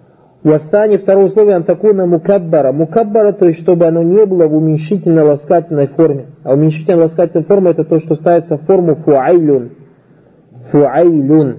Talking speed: 135 wpm